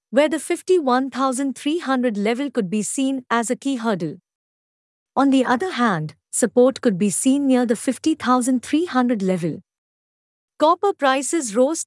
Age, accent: 50-69, Indian